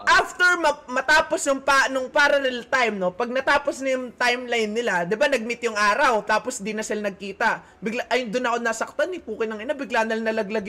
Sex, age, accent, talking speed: male, 20-39, native, 180 wpm